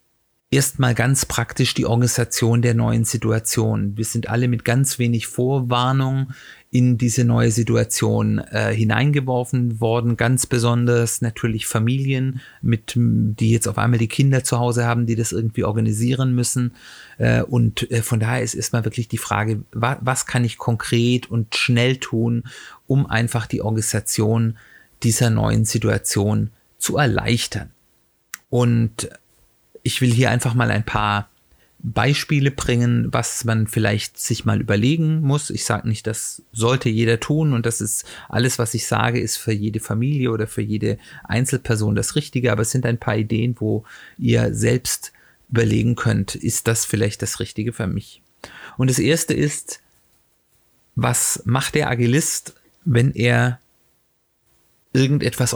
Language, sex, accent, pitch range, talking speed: German, male, German, 110-125 Hz, 150 wpm